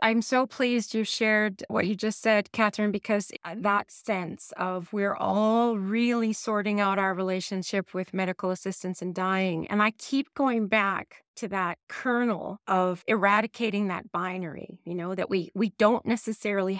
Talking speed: 160 wpm